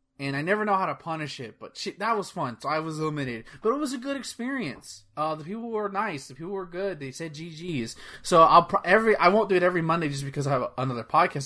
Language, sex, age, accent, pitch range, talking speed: English, male, 20-39, American, 135-185 Hz, 260 wpm